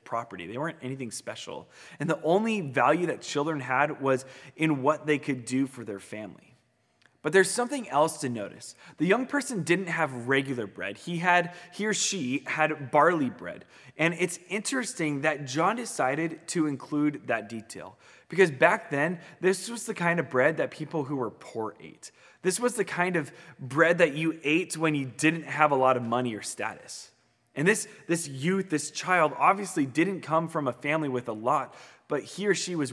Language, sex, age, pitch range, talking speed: English, male, 20-39, 130-175 Hz, 195 wpm